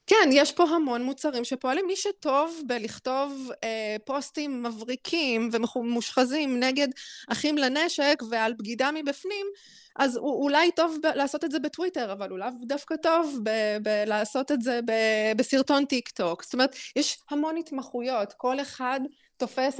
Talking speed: 145 wpm